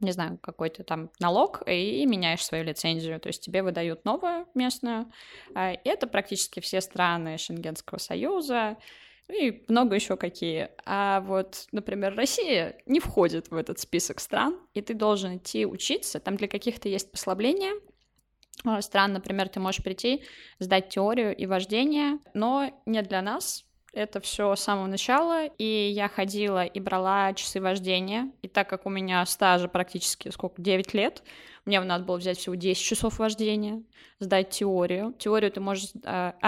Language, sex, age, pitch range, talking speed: Russian, female, 20-39, 185-215 Hz, 155 wpm